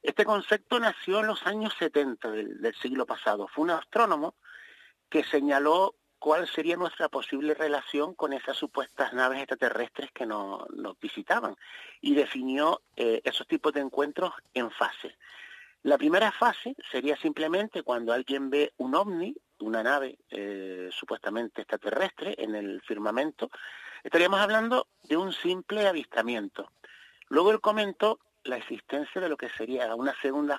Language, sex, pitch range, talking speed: Spanish, male, 130-210 Hz, 145 wpm